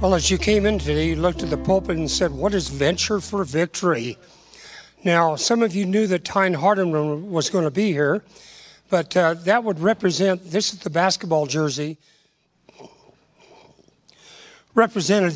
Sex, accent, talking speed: male, American, 165 wpm